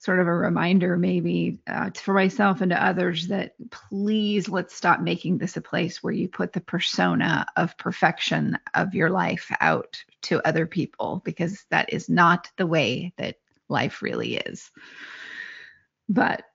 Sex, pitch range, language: female, 180-220 Hz, English